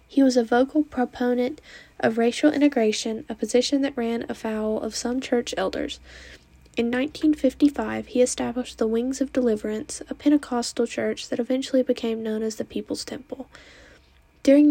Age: 10-29